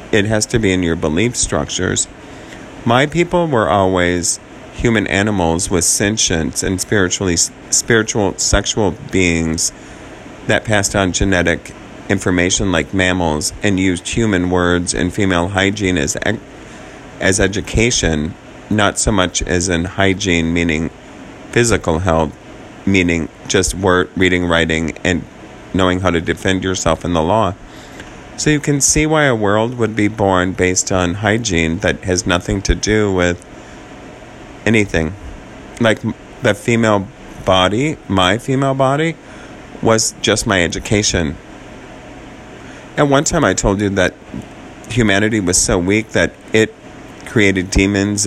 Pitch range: 90-105 Hz